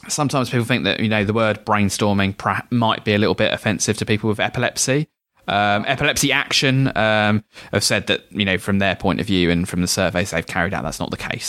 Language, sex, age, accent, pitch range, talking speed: English, male, 20-39, British, 100-120 Hz, 230 wpm